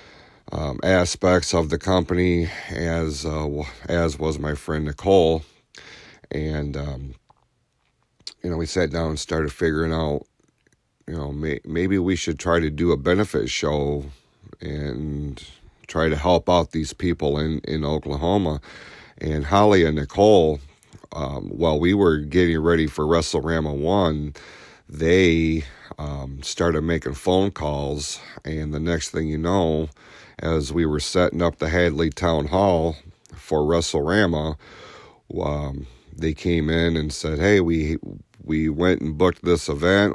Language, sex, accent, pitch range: English, male, American, 75-85 Hz